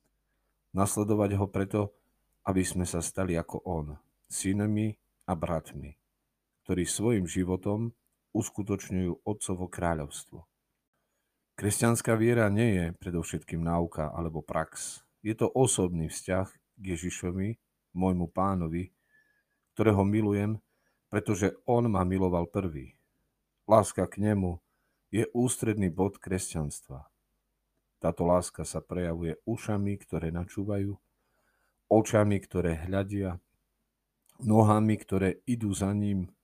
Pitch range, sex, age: 85-105 Hz, male, 40-59